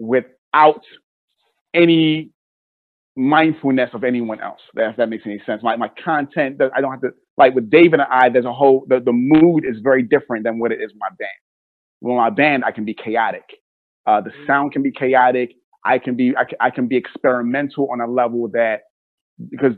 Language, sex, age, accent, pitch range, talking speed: English, male, 30-49, American, 125-150 Hz, 200 wpm